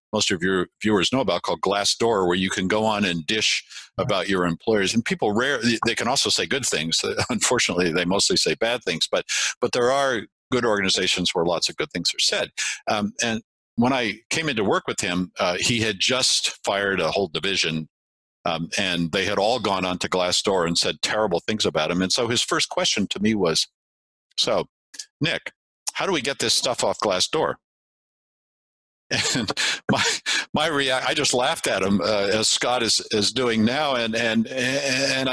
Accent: American